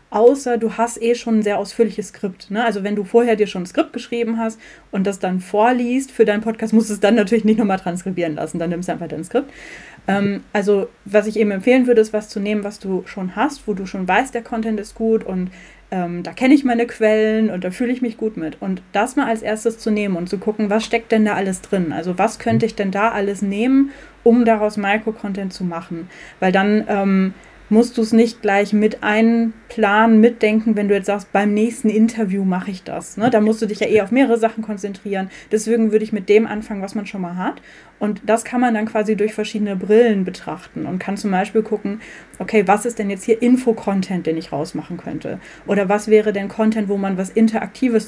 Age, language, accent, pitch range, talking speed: 30-49, German, German, 195-225 Hz, 230 wpm